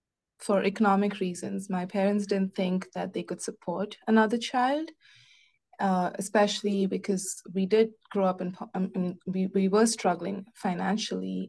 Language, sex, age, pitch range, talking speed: English, female, 20-39, 185-215 Hz, 135 wpm